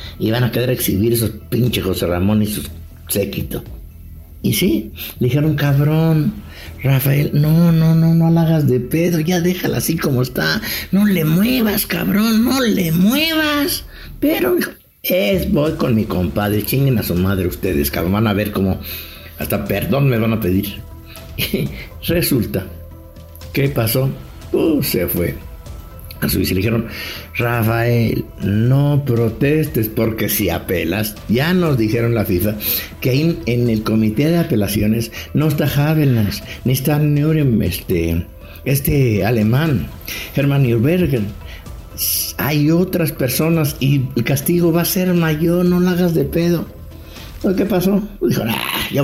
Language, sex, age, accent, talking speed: English, male, 60-79, Mexican, 145 wpm